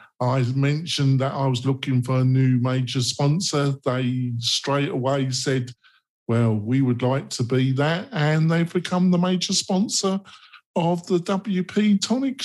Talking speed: 155 wpm